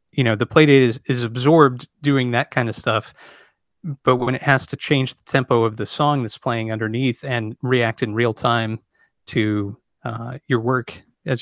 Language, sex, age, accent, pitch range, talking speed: English, male, 30-49, American, 120-145 Hz, 190 wpm